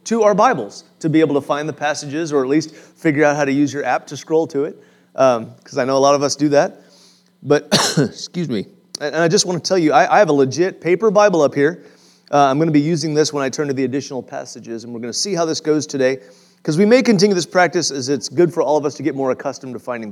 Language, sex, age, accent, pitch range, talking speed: English, male, 30-49, American, 140-175 Hz, 285 wpm